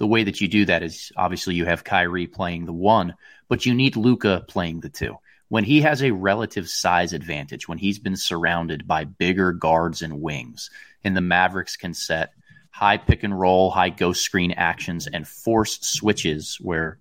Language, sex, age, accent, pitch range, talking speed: English, male, 30-49, American, 85-105 Hz, 190 wpm